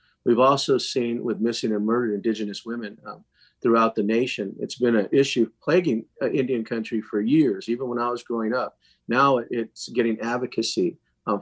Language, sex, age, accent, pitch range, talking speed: English, male, 50-69, American, 105-120 Hz, 180 wpm